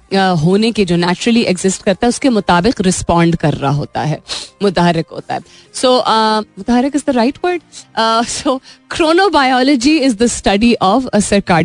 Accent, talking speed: native, 155 wpm